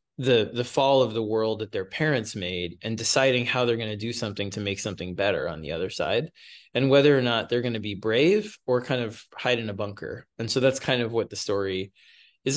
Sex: male